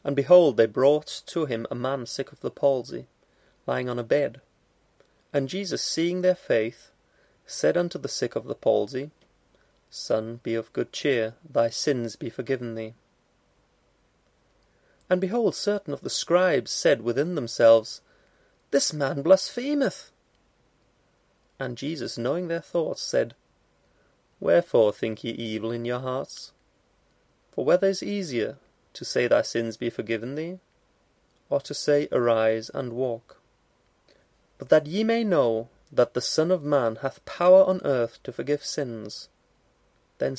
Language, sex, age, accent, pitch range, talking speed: English, male, 30-49, British, 115-180 Hz, 145 wpm